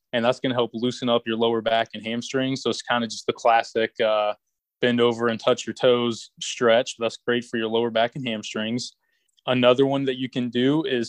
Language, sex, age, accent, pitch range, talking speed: English, male, 20-39, American, 115-130 Hz, 225 wpm